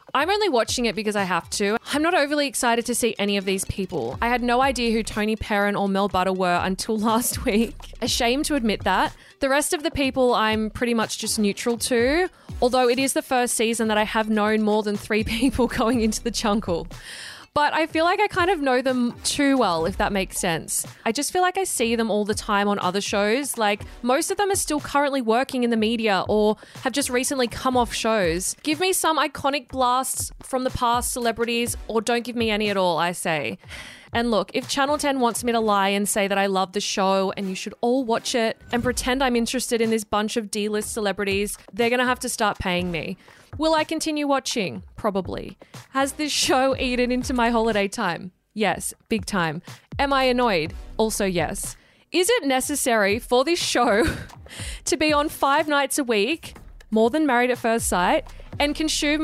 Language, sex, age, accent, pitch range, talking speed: English, female, 20-39, Australian, 210-265 Hz, 215 wpm